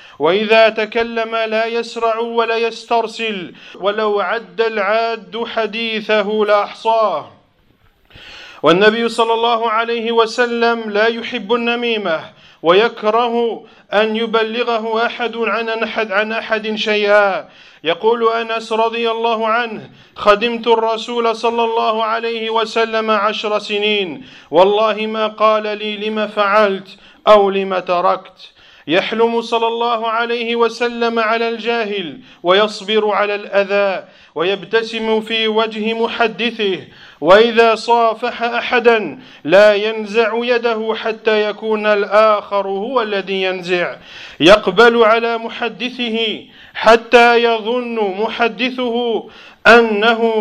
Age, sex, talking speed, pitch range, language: 40-59, male, 100 wpm, 210-230 Hz, French